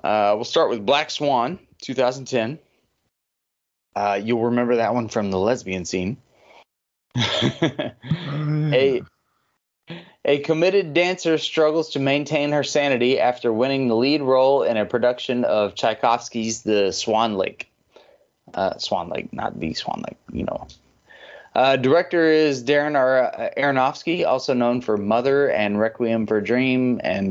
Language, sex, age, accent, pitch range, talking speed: English, male, 20-39, American, 115-145 Hz, 135 wpm